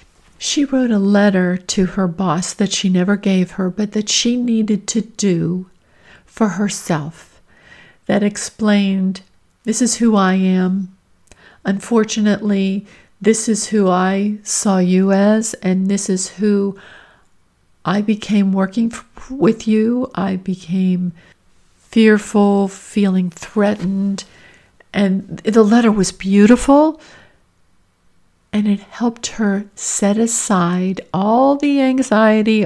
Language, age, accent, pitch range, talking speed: English, 60-79, American, 185-210 Hz, 115 wpm